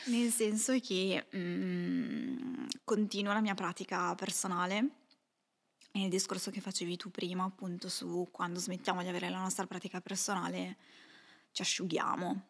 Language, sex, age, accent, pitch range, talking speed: Italian, female, 20-39, native, 180-220 Hz, 130 wpm